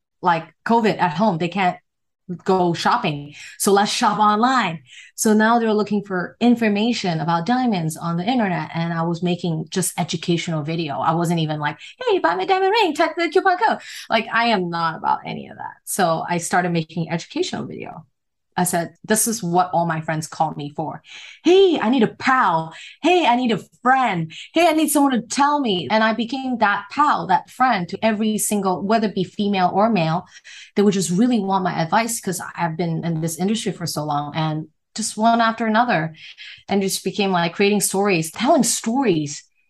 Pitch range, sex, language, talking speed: 170-230 Hz, female, English, 195 wpm